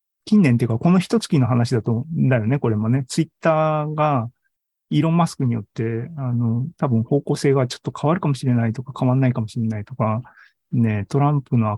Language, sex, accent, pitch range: Japanese, male, native, 115-165 Hz